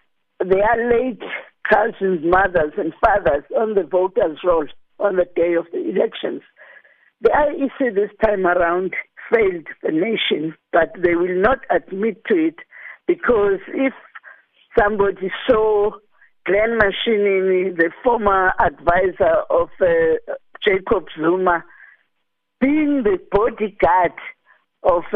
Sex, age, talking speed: female, 60-79, 115 wpm